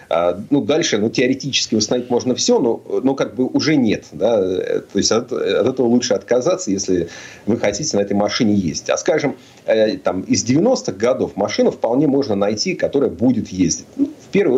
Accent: native